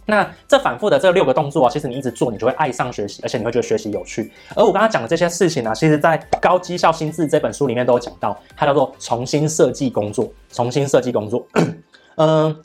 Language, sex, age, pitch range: Chinese, male, 20-39, 130-170 Hz